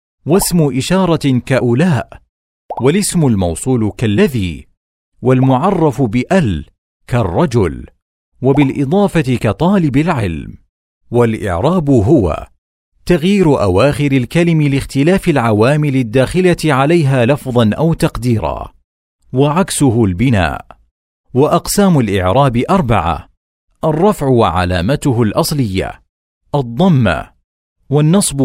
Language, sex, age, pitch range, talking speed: Arabic, male, 50-69, 90-150 Hz, 70 wpm